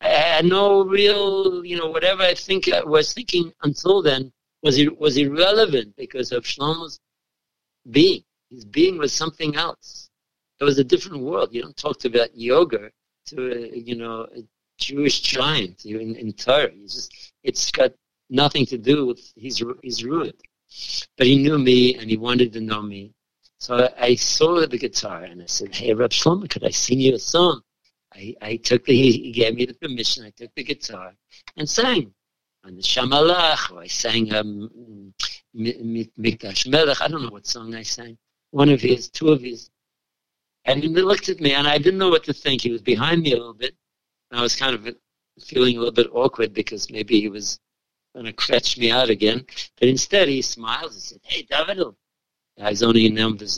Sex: male